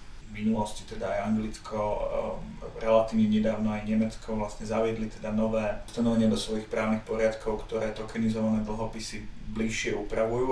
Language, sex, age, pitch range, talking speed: Slovak, male, 40-59, 110-115 Hz, 130 wpm